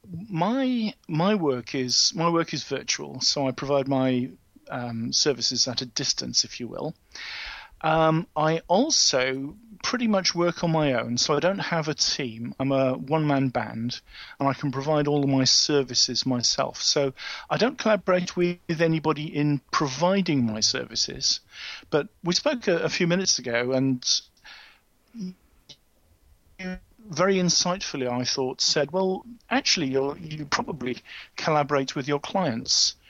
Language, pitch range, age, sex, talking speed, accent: English, 130-170 Hz, 50-69, male, 150 wpm, British